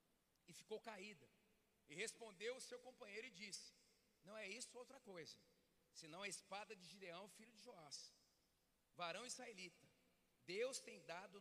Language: Portuguese